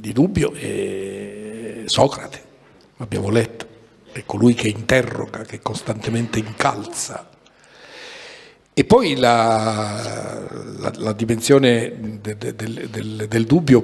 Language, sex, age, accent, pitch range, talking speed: Italian, male, 60-79, native, 115-135 Hz, 115 wpm